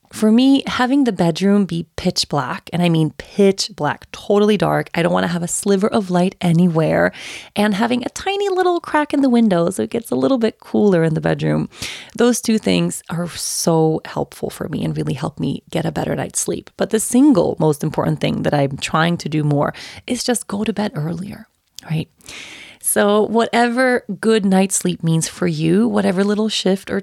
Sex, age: female, 30-49